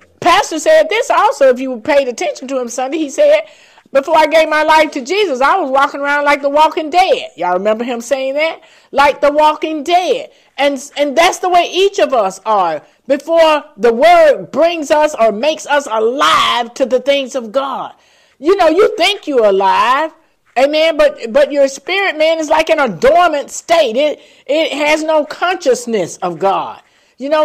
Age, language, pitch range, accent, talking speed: 50-69, English, 255-310 Hz, American, 190 wpm